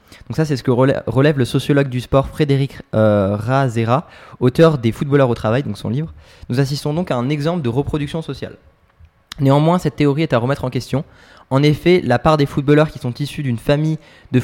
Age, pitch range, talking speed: 20-39, 120-145 Hz, 210 wpm